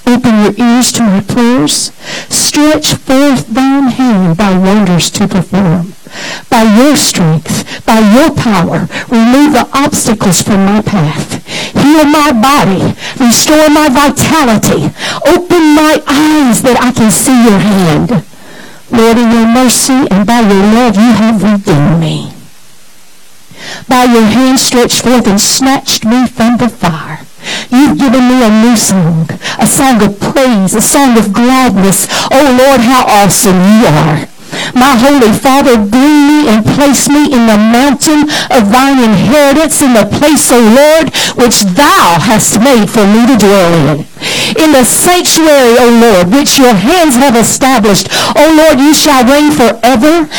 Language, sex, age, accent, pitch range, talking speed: English, female, 60-79, American, 210-280 Hz, 150 wpm